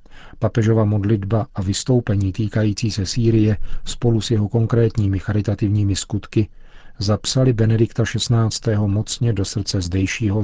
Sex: male